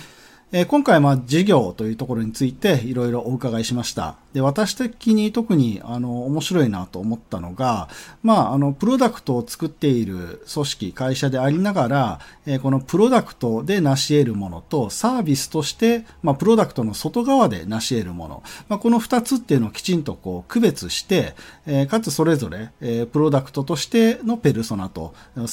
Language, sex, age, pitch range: Japanese, male, 40-59, 100-165 Hz